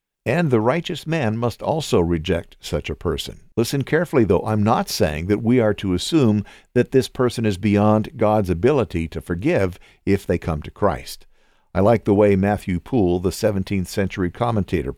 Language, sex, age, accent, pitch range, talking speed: English, male, 60-79, American, 95-125 Hz, 180 wpm